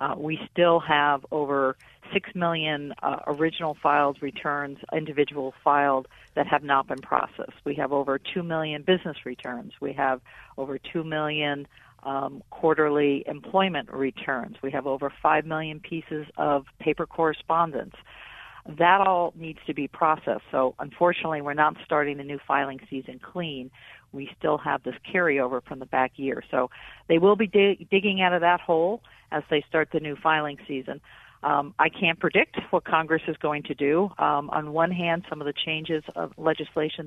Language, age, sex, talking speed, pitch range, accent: English, 50-69, female, 170 wpm, 140-165 Hz, American